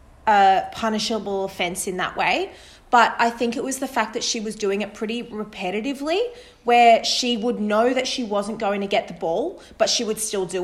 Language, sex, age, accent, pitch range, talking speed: English, female, 20-39, Australian, 195-230 Hz, 210 wpm